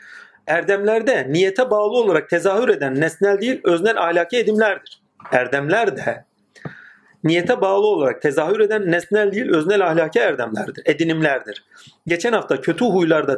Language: Turkish